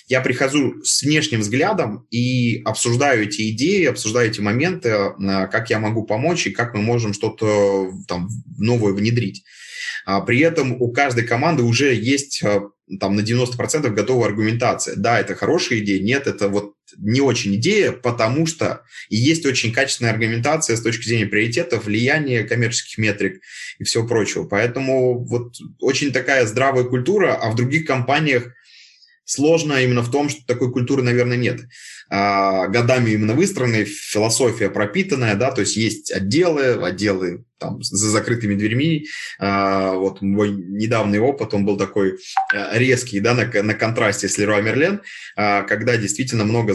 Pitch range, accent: 105-125 Hz, native